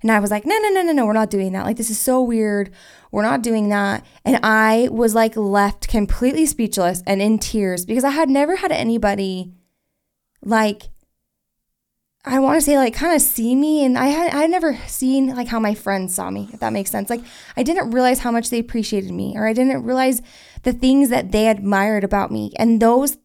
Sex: female